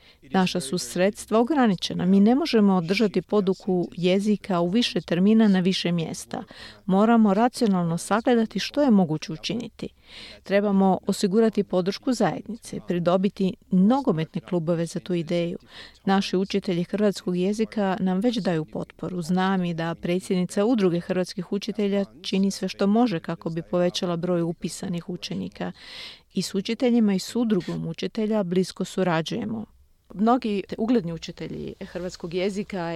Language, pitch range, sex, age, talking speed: Croatian, 180-220 Hz, female, 40-59, 130 wpm